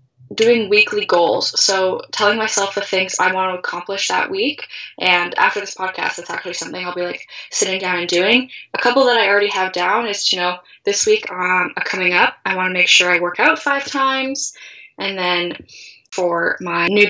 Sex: female